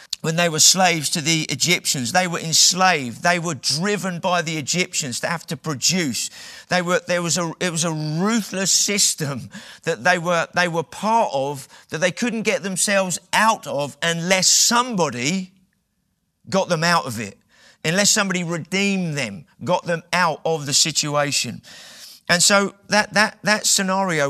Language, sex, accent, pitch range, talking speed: English, male, British, 145-185 Hz, 170 wpm